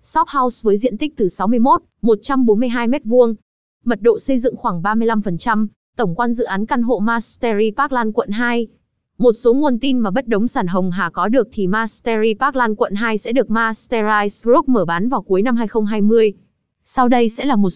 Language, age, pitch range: Vietnamese, 20-39, 210-250 Hz